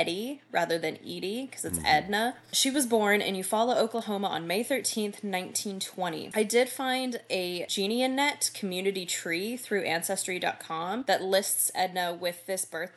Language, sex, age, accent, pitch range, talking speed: English, female, 10-29, American, 175-225 Hz, 150 wpm